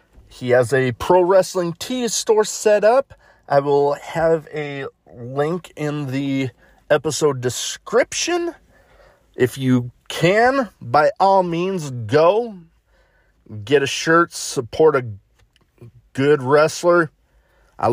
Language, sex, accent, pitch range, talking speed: English, male, American, 115-155 Hz, 110 wpm